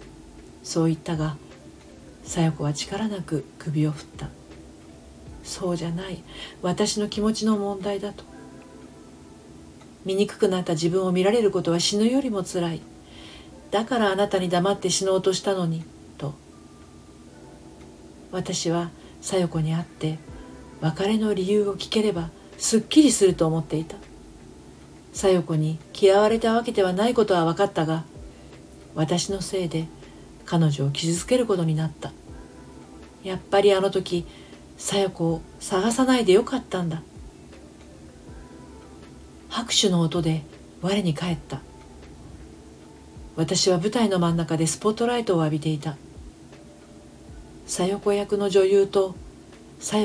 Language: Japanese